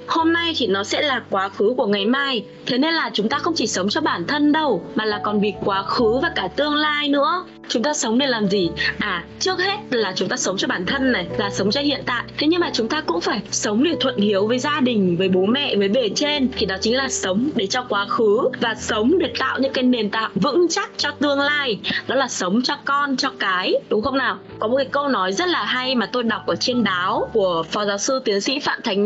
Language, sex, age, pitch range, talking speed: Vietnamese, female, 20-39, 210-295 Hz, 270 wpm